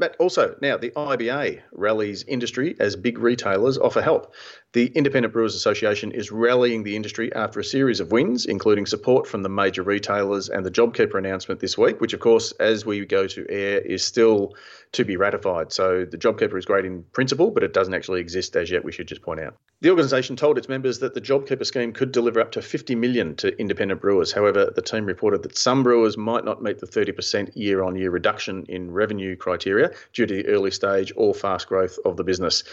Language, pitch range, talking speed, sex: English, 100-155 Hz, 210 wpm, male